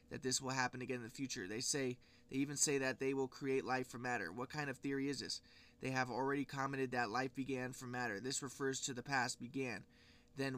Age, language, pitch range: 20-39, English, 125-135 Hz